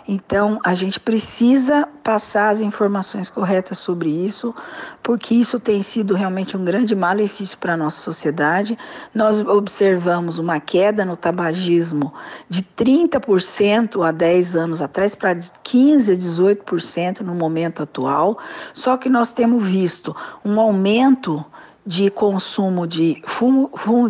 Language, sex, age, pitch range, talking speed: English, female, 50-69, 180-235 Hz, 130 wpm